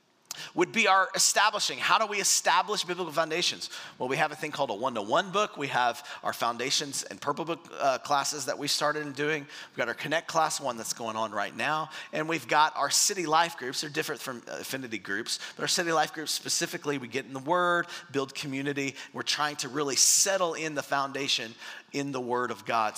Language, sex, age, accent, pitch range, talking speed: English, male, 40-59, American, 140-170 Hz, 210 wpm